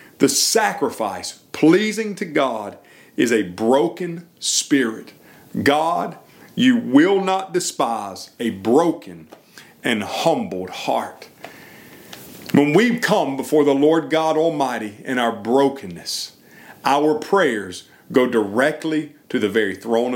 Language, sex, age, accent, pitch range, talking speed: English, male, 40-59, American, 125-165 Hz, 115 wpm